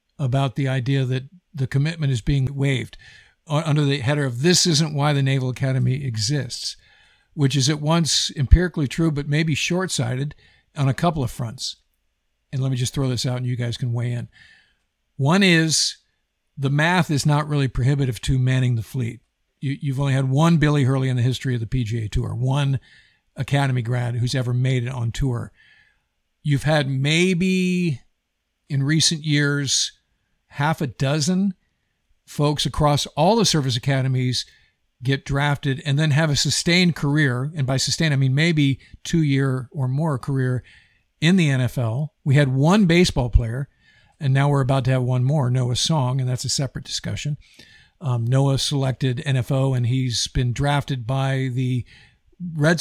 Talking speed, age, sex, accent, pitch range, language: 170 wpm, 50-69, male, American, 130-150 Hz, English